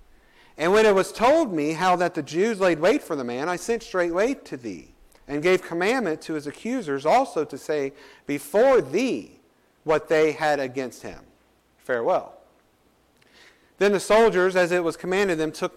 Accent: American